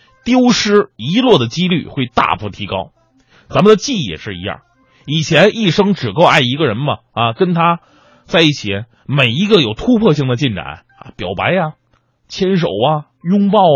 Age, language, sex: 30-49, Chinese, male